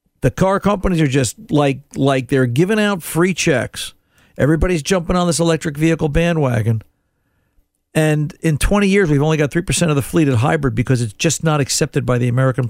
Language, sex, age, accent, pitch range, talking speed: English, male, 50-69, American, 135-180 Hz, 190 wpm